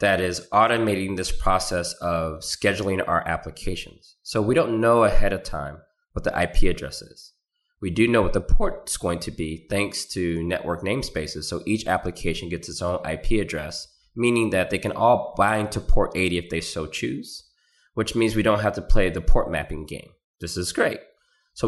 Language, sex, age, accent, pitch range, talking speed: English, male, 20-39, American, 85-105 Hz, 195 wpm